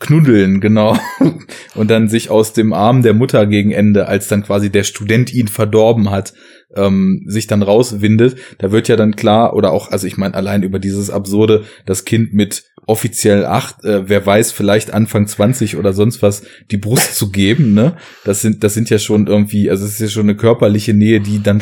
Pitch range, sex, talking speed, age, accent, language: 100-115 Hz, male, 205 wpm, 20-39, German, German